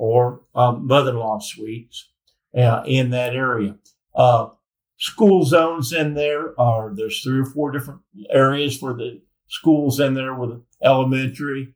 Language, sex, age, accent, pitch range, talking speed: English, male, 50-69, American, 115-135 Hz, 140 wpm